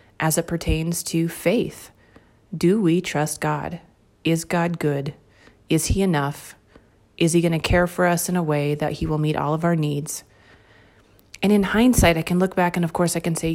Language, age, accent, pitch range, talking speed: English, 30-49, American, 160-195 Hz, 205 wpm